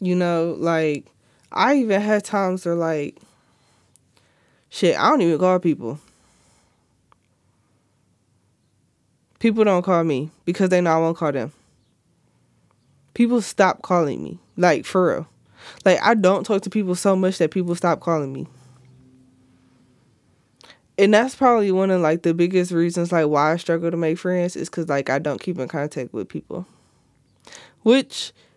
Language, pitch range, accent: English, 155-190 Hz, American